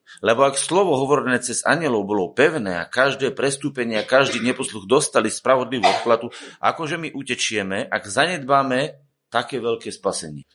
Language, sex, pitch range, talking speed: Slovak, male, 110-145 Hz, 150 wpm